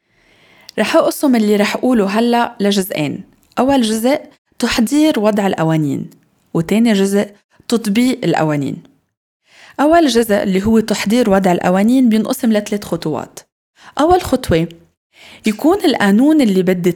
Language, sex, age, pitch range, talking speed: Arabic, female, 20-39, 185-240 Hz, 115 wpm